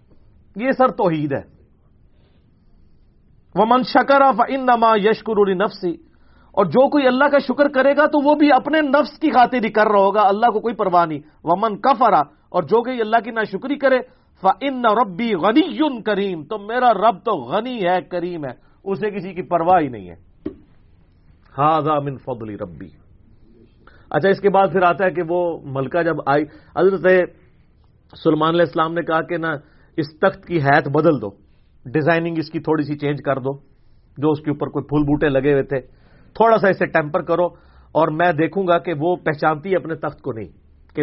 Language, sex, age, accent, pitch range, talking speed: English, male, 40-59, Indian, 135-195 Hz, 145 wpm